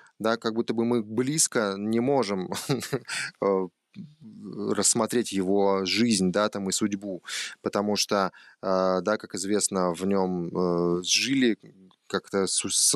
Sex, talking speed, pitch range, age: male, 115 wpm, 95-115 Hz, 20-39